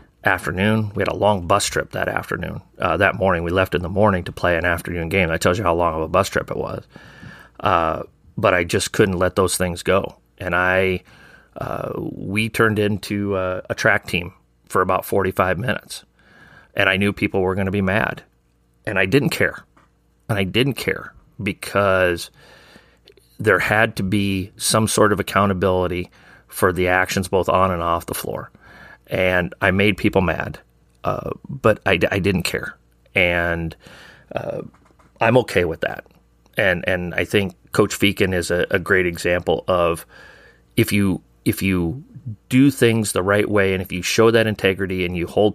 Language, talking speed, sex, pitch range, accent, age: English, 180 wpm, male, 90-105 Hz, American, 30-49